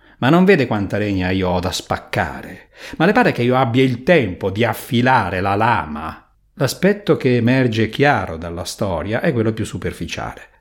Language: English